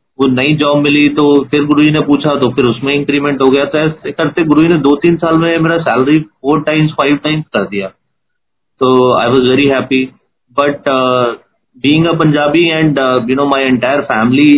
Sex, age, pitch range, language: male, 30-49, 125-150 Hz, Hindi